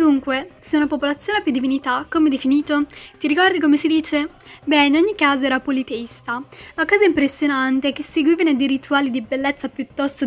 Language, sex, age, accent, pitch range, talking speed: Italian, female, 20-39, native, 265-315 Hz, 180 wpm